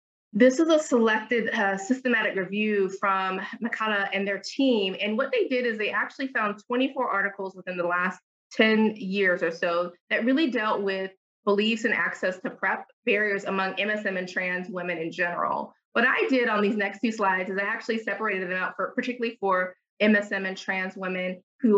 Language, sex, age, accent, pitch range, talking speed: English, female, 20-39, American, 190-225 Hz, 185 wpm